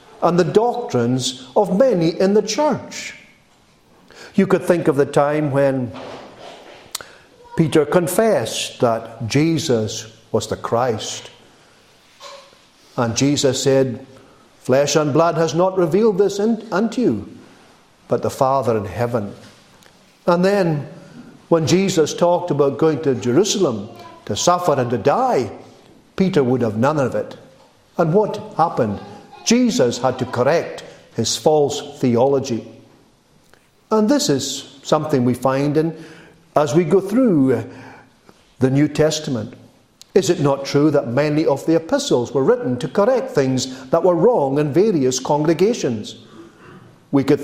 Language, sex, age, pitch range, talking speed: English, male, 60-79, 135-185 Hz, 135 wpm